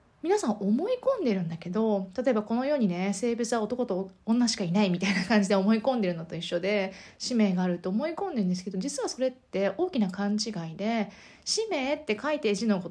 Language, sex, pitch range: Japanese, female, 200-265 Hz